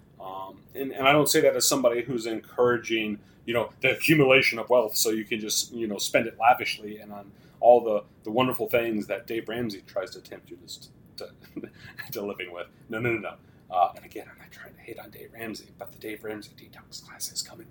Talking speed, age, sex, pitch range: 230 wpm, 30-49, male, 100-130 Hz